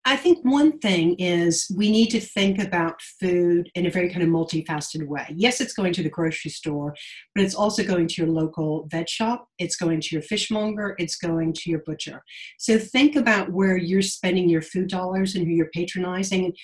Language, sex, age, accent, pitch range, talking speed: English, female, 50-69, American, 165-205 Hz, 205 wpm